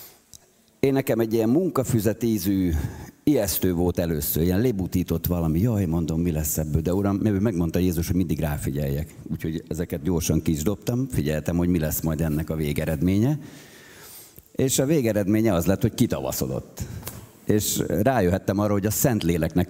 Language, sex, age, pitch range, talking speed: Hungarian, male, 50-69, 85-105 Hz, 150 wpm